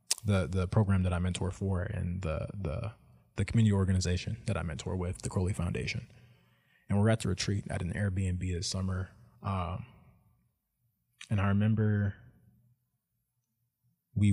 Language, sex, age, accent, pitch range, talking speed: English, male, 20-39, American, 95-115 Hz, 145 wpm